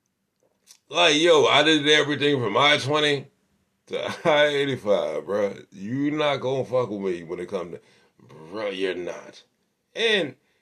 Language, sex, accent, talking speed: English, male, American, 135 wpm